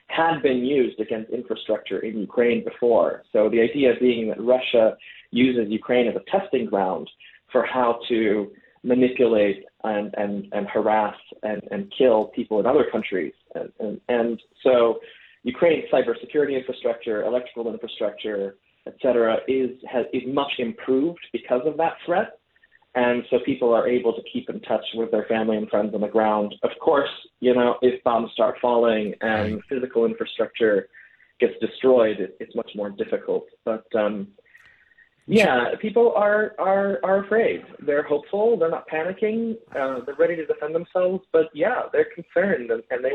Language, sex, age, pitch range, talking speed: English, male, 20-39, 120-165 Hz, 160 wpm